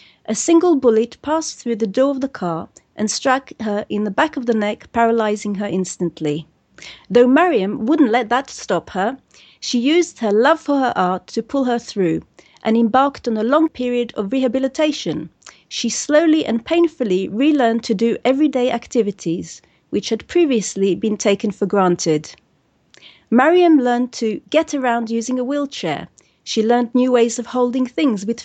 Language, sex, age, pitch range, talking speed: English, female, 40-59, 210-290 Hz, 170 wpm